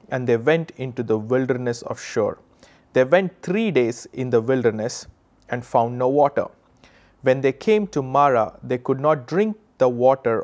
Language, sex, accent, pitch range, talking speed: English, male, Indian, 120-155 Hz, 170 wpm